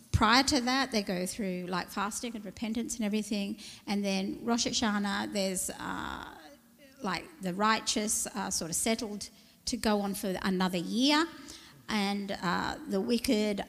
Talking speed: 155 wpm